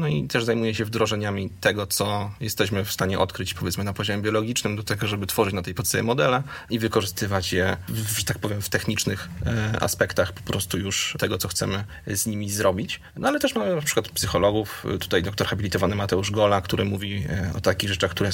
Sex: male